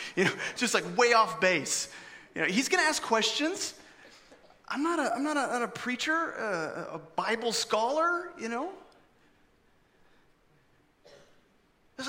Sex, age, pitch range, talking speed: male, 30-49, 190-245 Hz, 140 wpm